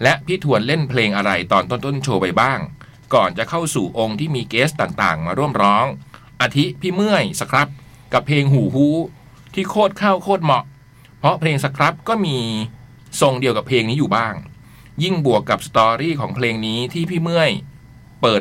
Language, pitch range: Thai, 120-155 Hz